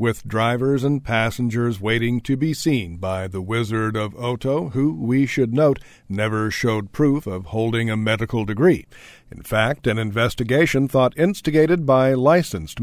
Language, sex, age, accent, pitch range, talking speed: English, male, 50-69, American, 105-130 Hz, 155 wpm